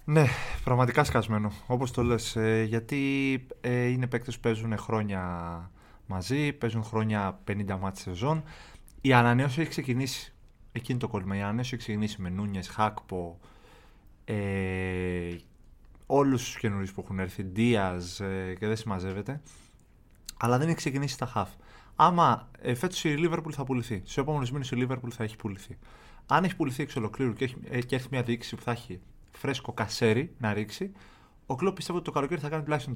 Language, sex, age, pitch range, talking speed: Greek, male, 30-49, 100-135 Hz, 175 wpm